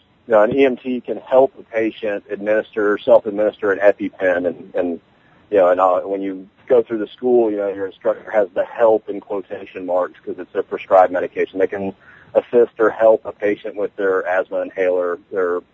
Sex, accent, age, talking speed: male, American, 40-59, 190 wpm